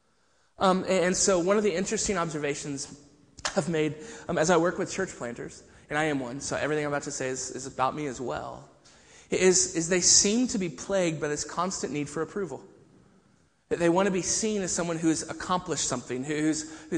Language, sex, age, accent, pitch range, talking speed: English, male, 20-39, American, 145-185 Hz, 215 wpm